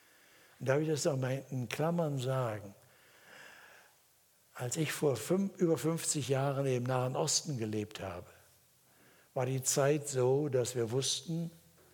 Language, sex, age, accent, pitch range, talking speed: German, male, 60-79, German, 125-155 Hz, 130 wpm